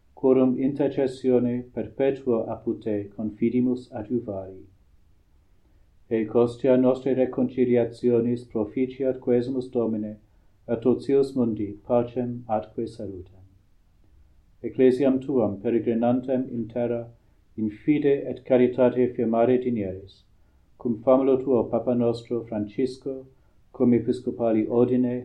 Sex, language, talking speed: male, English, 95 wpm